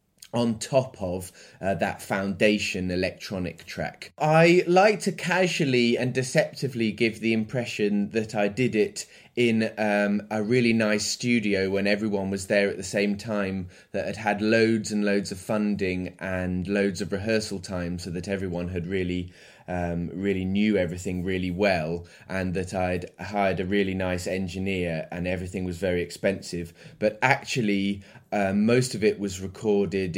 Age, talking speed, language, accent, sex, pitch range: 20-39, 160 wpm, English, British, male, 95-120 Hz